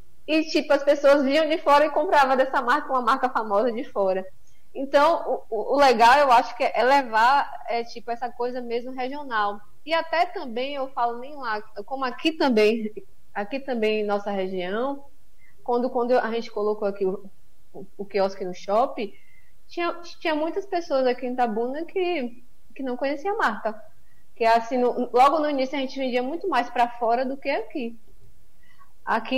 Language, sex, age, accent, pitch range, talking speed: Portuguese, female, 20-39, Brazilian, 215-275 Hz, 180 wpm